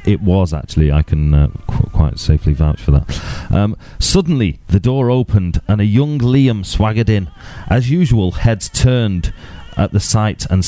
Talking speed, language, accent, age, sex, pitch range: 170 wpm, English, British, 30-49, male, 80-110 Hz